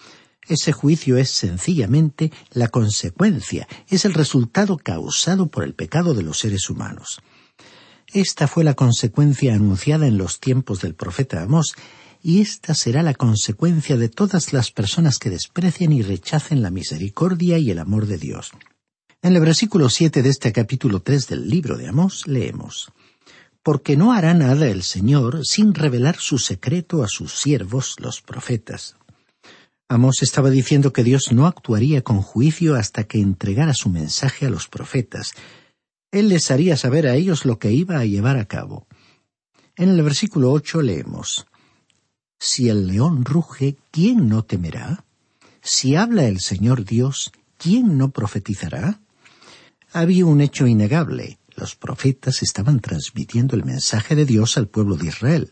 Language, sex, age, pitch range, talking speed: Spanish, male, 50-69, 110-160 Hz, 155 wpm